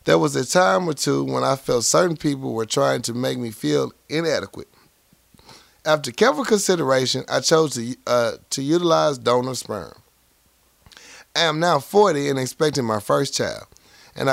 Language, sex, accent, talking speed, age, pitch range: English, male, American, 165 wpm, 30-49, 120-165 Hz